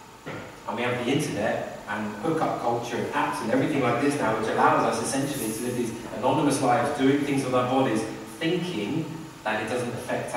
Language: English